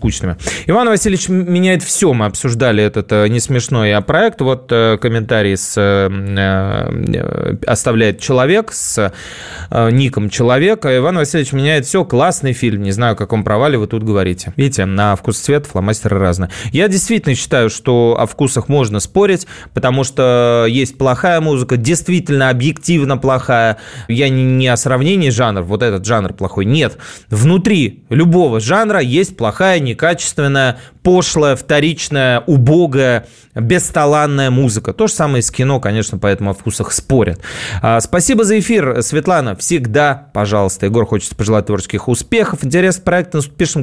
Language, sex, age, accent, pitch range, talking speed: Russian, male, 20-39, native, 110-150 Hz, 150 wpm